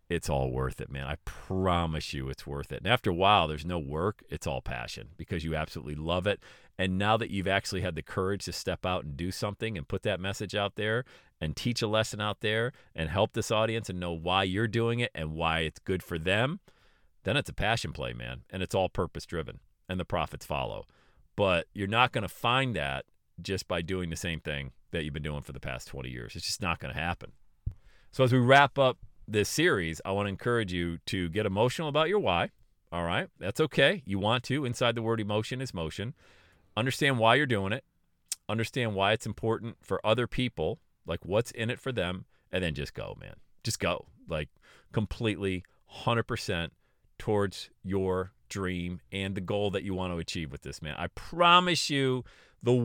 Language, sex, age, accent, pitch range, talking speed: English, male, 40-59, American, 85-115 Hz, 210 wpm